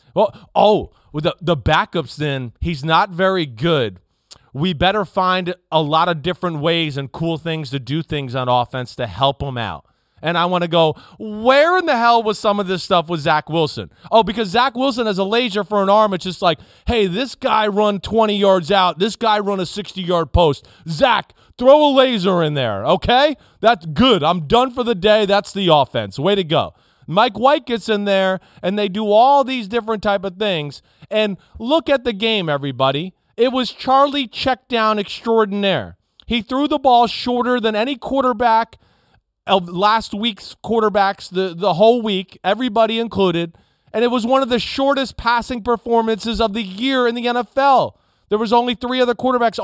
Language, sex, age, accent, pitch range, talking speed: English, male, 30-49, American, 170-235 Hz, 190 wpm